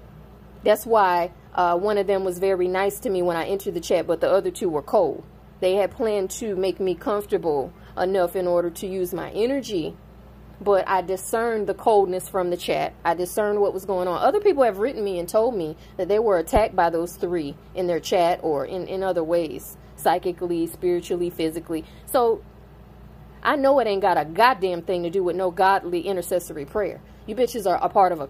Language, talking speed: English, 210 wpm